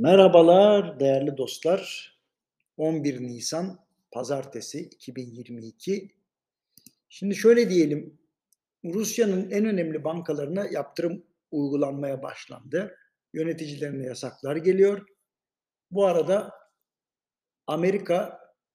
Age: 60-79